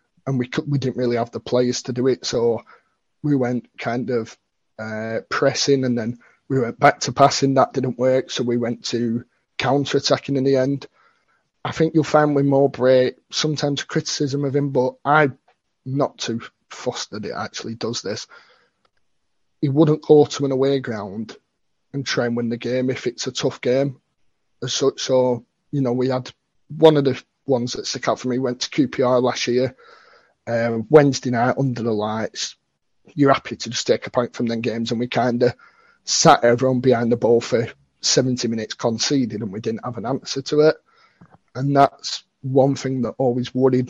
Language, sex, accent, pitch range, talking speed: English, male, British, 120-140 Hz, 190 wpm